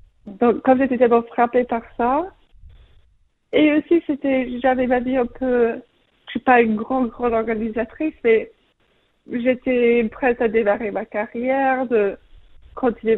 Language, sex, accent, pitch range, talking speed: French, female, French, 215-255 Hz, 140 wpm